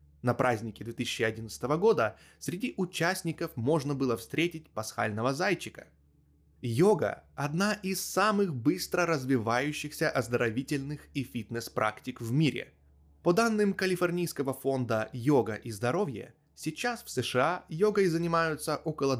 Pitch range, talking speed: 115-170 Hz, 110 wpm